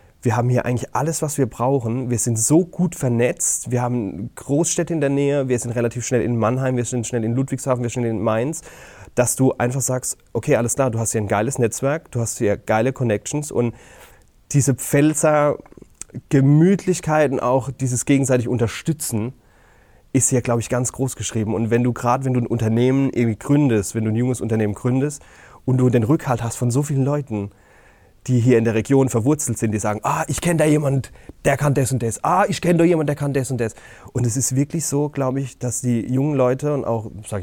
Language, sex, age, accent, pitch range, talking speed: German, male, 30-49, German, 115-140 Hz, 215 wpm